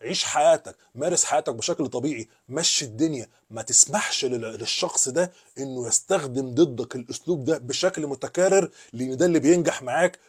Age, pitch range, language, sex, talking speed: 30-49, 135-180 Hz, Arabic, male, 140 wpm